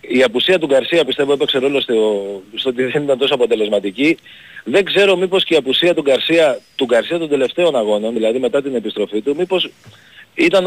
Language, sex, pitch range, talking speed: Greek, male, 130-160 Hz, 180 wpm